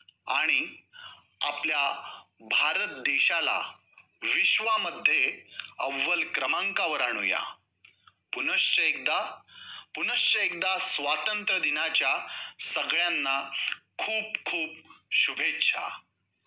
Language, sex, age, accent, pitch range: Marathi, male, 30-49, native, 175-235 Hz